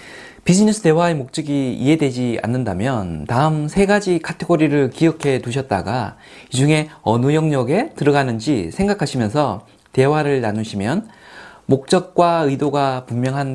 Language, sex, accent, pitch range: Korean, male, native, 120-175 Hz